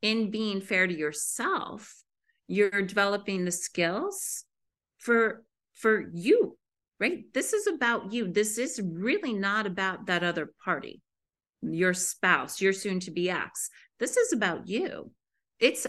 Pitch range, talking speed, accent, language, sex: 180-220 Hz, 130 wpm, American, English, female